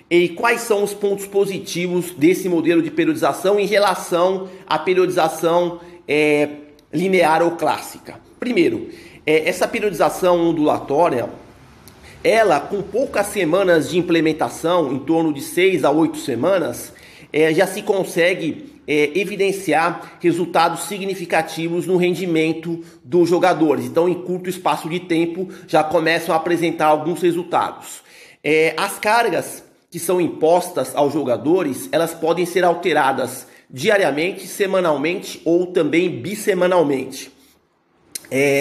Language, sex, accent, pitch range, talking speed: Portuguese, male, Brazilian, 160-200 Hz, 120 wpm